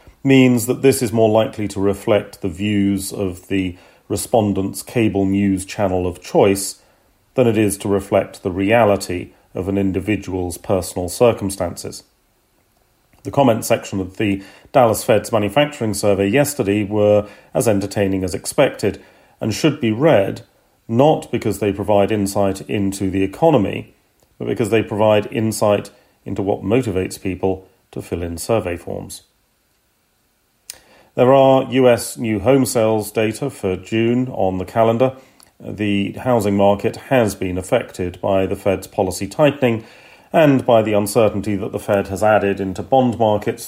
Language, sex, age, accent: English, male, 40-59, British